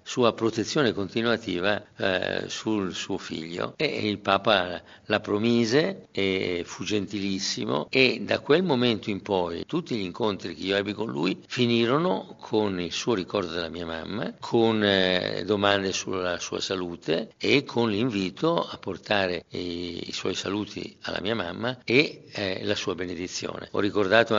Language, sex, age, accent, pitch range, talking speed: Italian, male, 50-69, native, 95-115 Hz, 155 wpm